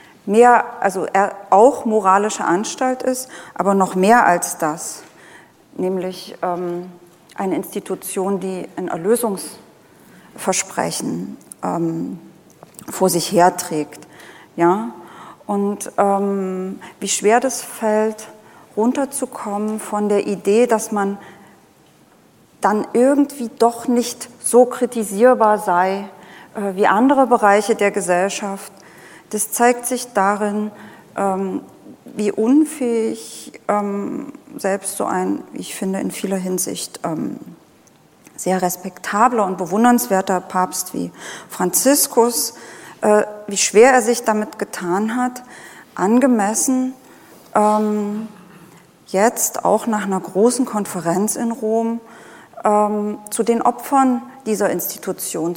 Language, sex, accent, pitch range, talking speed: German, female, German, 190-240 Hz, 95 wpm